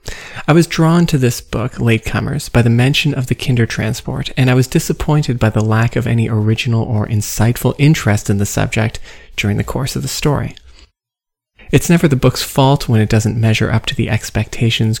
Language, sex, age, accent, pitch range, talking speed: English, male, 30-49, American, 110-135 Hz, 195 wpm